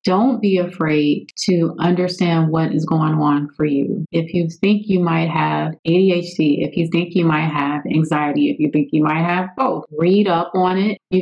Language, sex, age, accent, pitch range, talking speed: English, female, 30-49, American, 170-205 Hz, 200 wpm